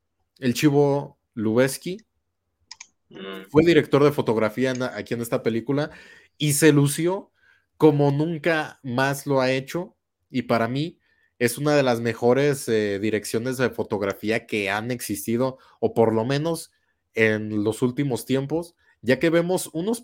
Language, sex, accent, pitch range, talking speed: Spanish, male, Mexican, 115-145 Hz, 145 wpm